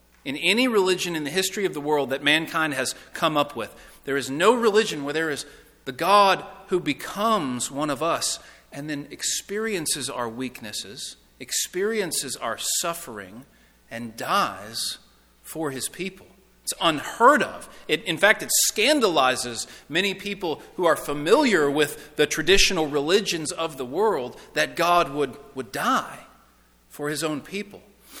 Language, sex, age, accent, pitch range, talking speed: English, male, 40-59, American, 145-195 Hz, 150 wpm